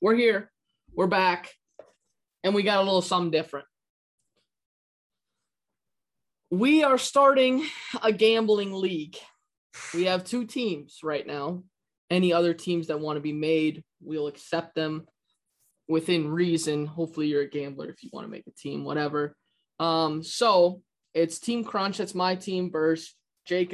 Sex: male